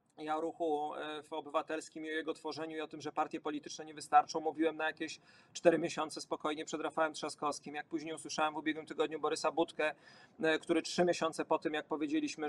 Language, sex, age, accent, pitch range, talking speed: Polish, male, 40-59, native, 155-190 Hz, 190 wpm